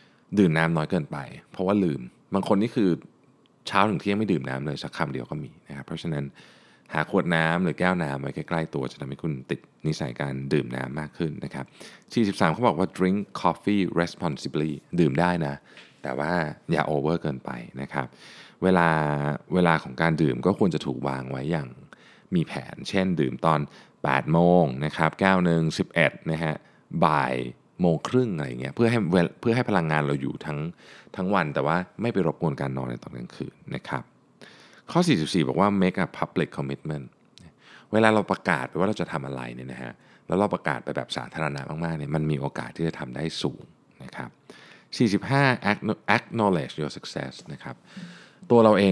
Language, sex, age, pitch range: Thai, male, 20-39, 70-95 Hz